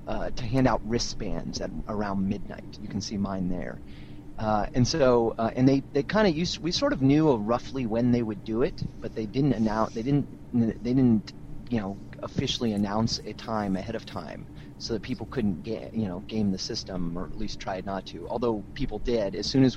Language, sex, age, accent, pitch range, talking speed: English, male, 30-49, American, 105-130 Hz, 220 wpm